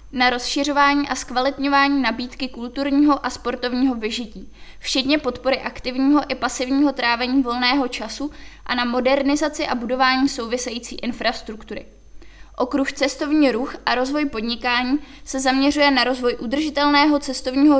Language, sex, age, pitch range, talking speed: Czech, female, 20-39, 245-280 Hz, 120 wpm